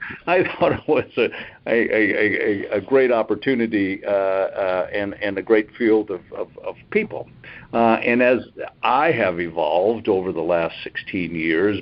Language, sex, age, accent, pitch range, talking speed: English, male, 60-79, American, 95-125 Hz, 160 wpm